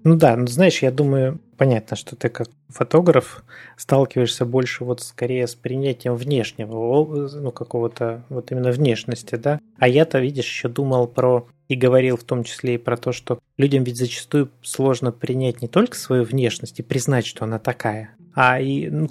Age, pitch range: 20-39, 120-145 Hz